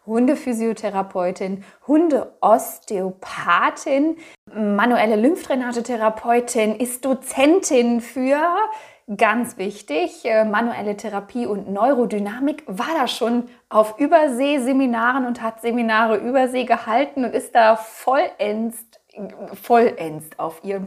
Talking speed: 85 wpm